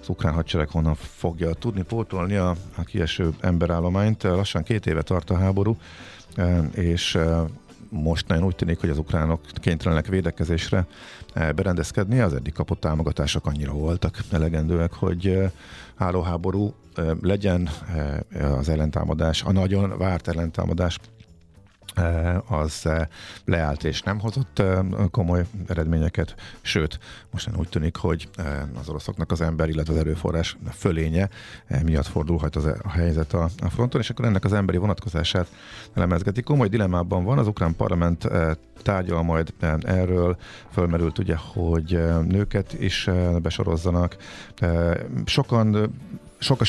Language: Hungarian